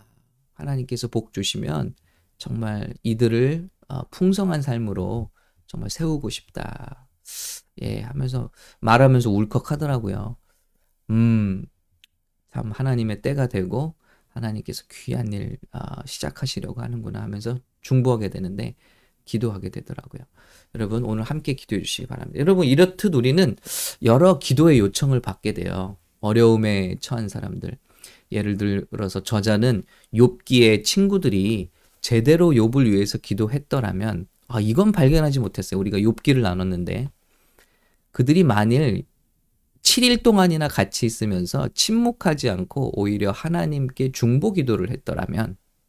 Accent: Korean